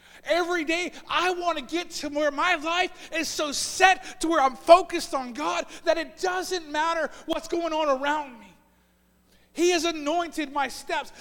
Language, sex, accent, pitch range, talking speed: English, male, American, 195-300 Hz, 175 wpm